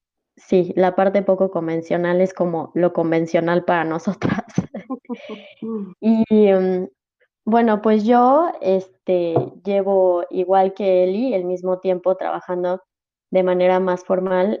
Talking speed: 110 wpm